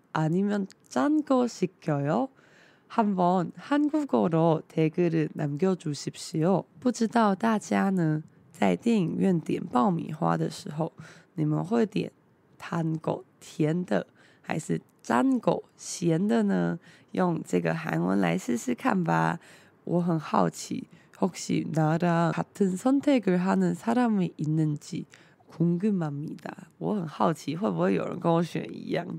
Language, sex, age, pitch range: Chinese, female, 20-39, 155-225 Hz